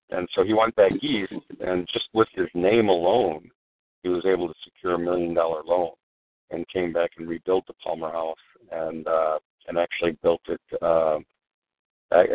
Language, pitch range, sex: English, 85-95 Hz, male